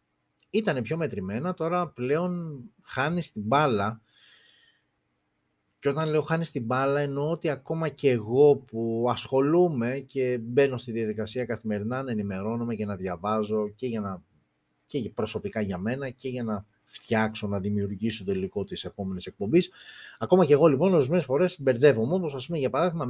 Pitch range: 110-155 Hz